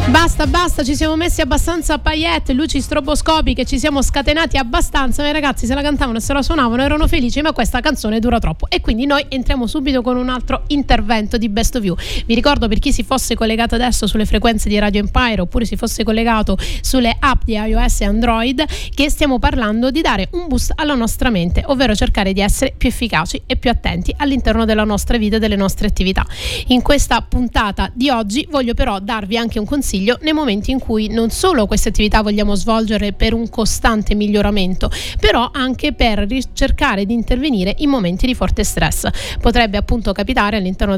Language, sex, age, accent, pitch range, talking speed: Italian, female, 30-49, native, 210-275 Hz, 195 wpm